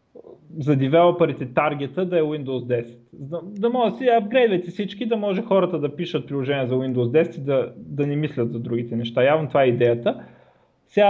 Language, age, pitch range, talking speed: Bulgarian, 30-49, 140-185 Hz, 190 wpm